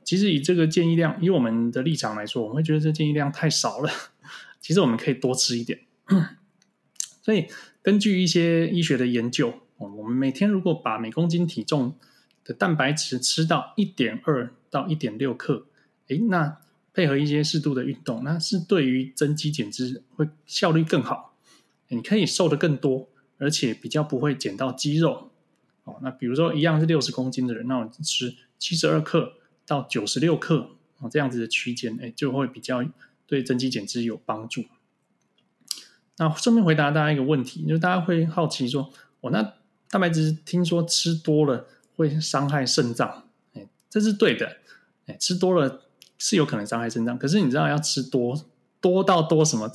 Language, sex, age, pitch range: Chinese, male, 20-39, 125-165 Hz